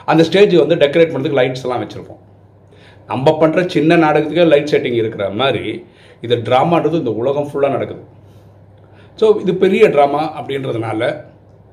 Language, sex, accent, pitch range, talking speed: Tamil, male, native, 105-155 Hz, 135 wpm